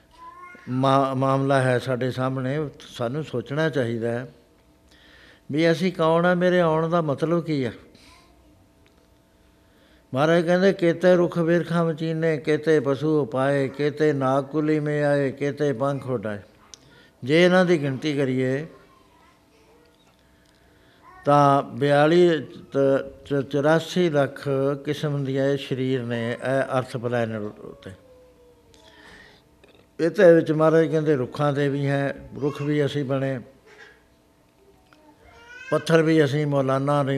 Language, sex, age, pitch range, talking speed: Punjabi, male, 60-79, 130-160 Hz, 115 wpm